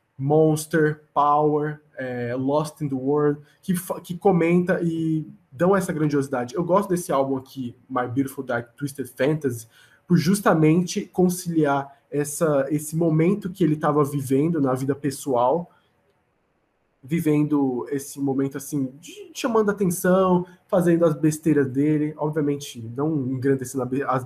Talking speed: 130 wpm